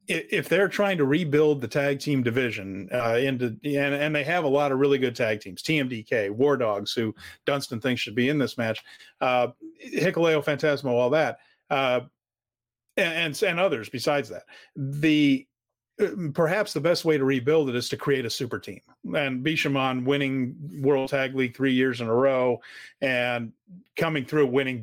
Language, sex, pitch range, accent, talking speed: English, male, 125-150 Hz, American, 175 wpm